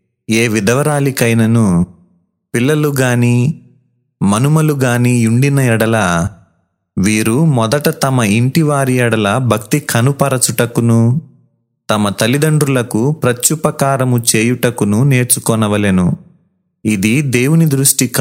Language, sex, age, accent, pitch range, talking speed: Telugu, male, 30-49, native, 110-140 Hz, 70 wpm